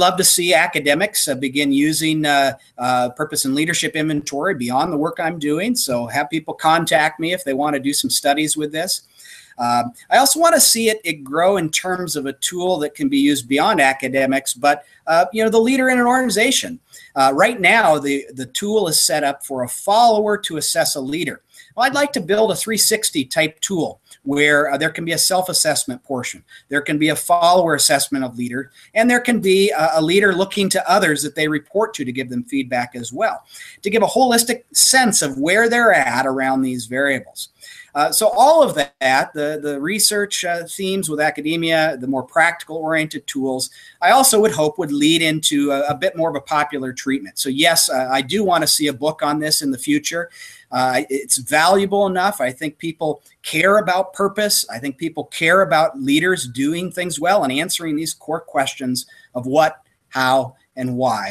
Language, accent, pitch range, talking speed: English, American, 140-190 Hz, 205 wpm